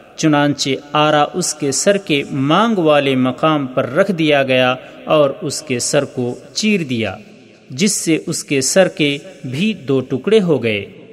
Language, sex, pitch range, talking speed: Urdu, male, 140-200 Hz, 175 wpm